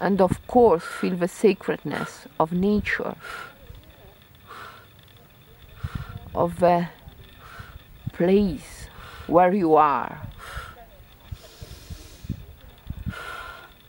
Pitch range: 205-260 Hz